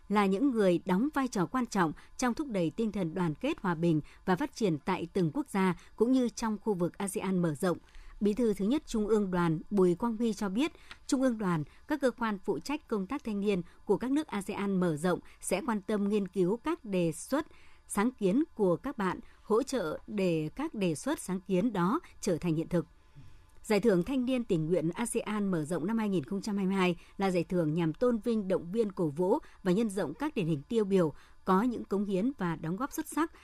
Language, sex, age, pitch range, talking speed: Vietnamese, male, 60-79, 175-230 Hz, 225 wpm